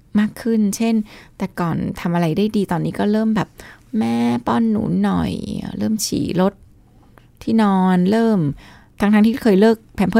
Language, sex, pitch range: Thai, female, 165-210 Hz